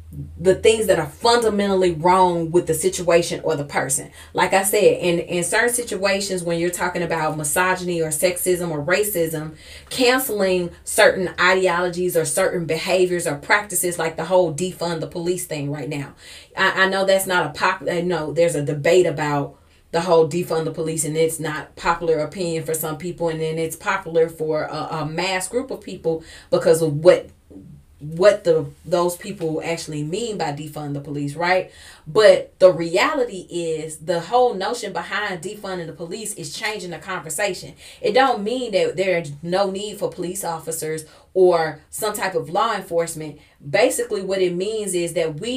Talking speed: 175 wpm